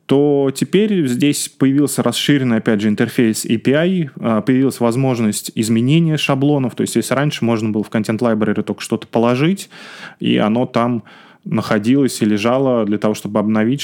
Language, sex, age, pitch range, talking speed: Russian, male, 20-39, 110-135 Hz, 145 wpm